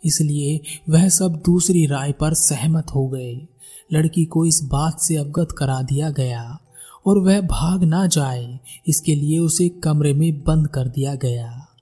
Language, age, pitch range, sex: Hindi, 20-39, 135-175 Hz, male